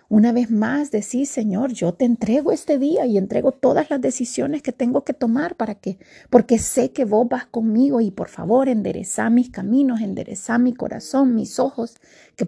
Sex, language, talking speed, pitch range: female, Spanish, 190 wpm, 215-280 Hz